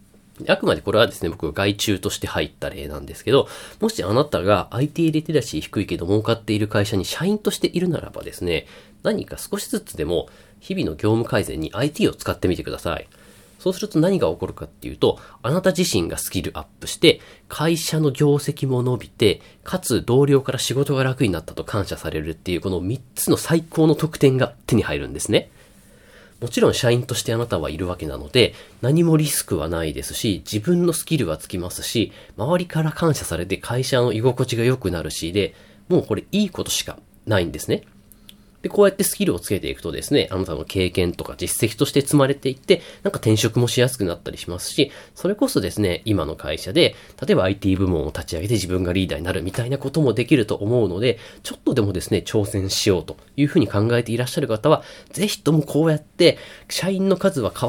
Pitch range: 95-150 Hz